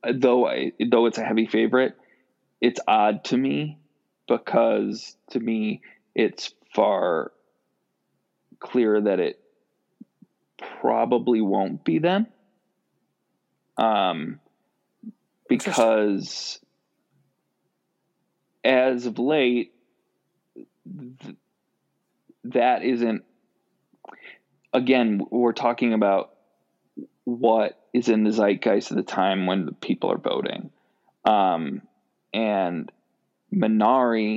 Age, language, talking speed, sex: 20-39, English, 85 wpm, male